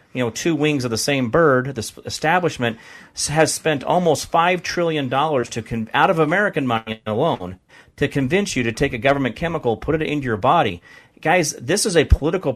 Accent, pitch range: American, 140-215 Hz